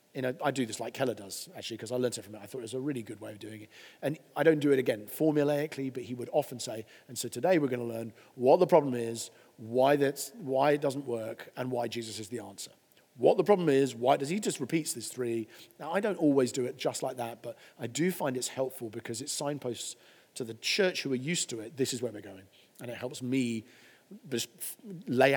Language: English